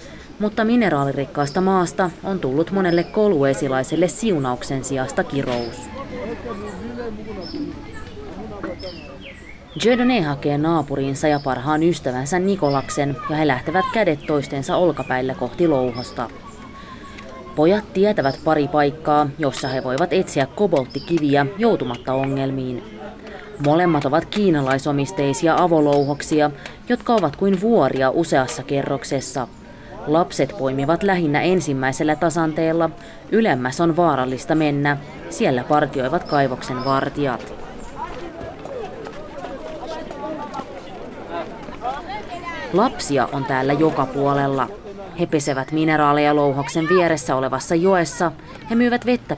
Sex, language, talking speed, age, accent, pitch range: female, Finnish, 90 wpm, 20-39, native, 135-175 Hz